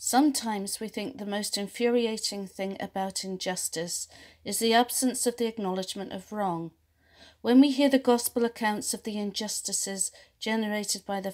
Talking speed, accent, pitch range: 155 wpm, British, 185-230 Hz